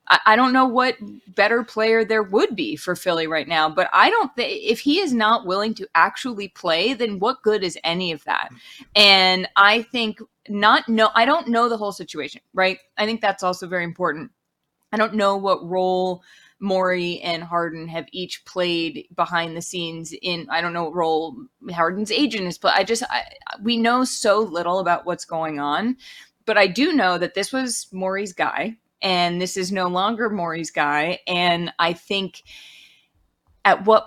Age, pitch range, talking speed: 20-39, 170-215 Hz, 185 wpm